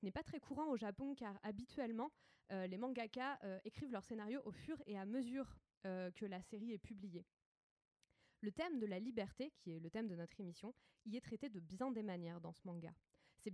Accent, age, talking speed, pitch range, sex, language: French, 20-39, 215 wpm, 185-250 Hz, female, French